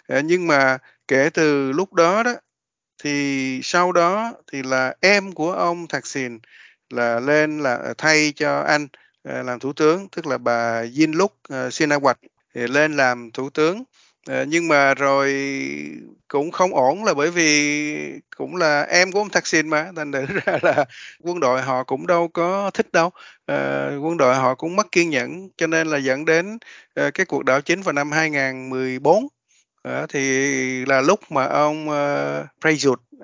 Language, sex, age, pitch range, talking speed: Vietnamese, male, 20-39, 130-170 Hz, 170 wpm